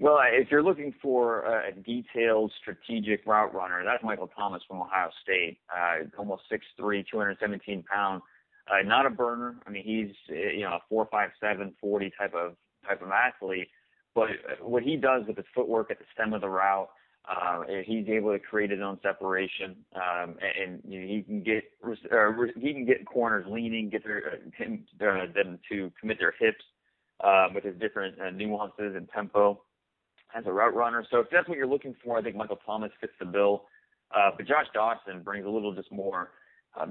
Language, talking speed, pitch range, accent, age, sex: English, 195 wpm, 95-110 Hz, American, 30-49, male